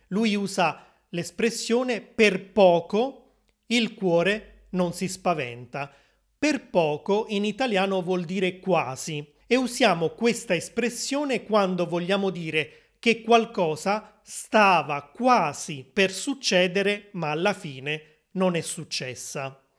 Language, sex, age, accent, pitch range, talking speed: Italian, male, 30-49, native, 155-220 Hz, 110 wpm